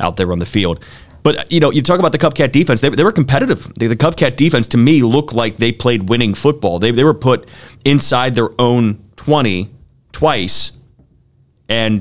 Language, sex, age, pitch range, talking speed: English, male, 30-49, 95-120 Hz, 200 wpm